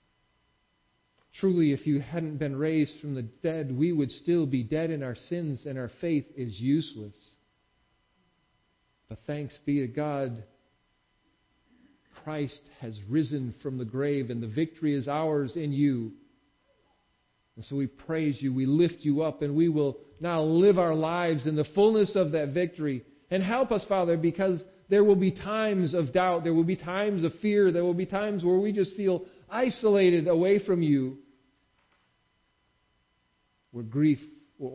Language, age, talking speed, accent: English, 50-69, 160 wpm, American